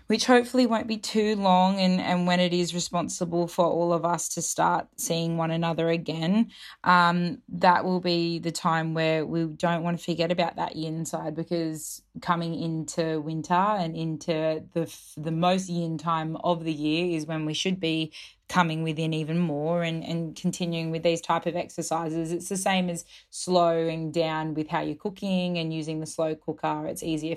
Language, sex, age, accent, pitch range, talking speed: English, female, 20-39, Australian, 160-180 Hz, 190 wpm